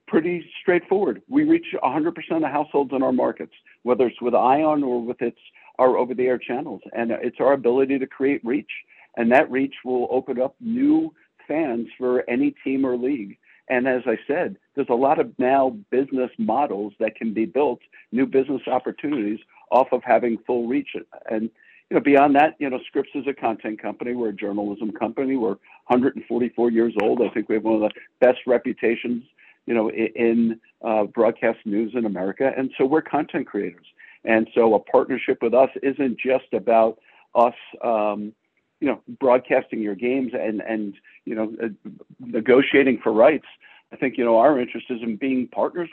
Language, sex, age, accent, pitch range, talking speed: English, male, 60-79, American, 115-135 Hz, 180 wpm